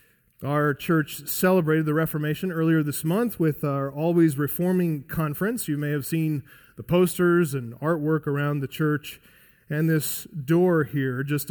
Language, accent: English, American